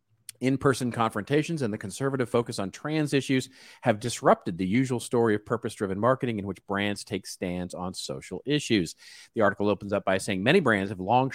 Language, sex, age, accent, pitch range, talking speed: English, male, 40-59, American, 100-135 Hz, 185 wpm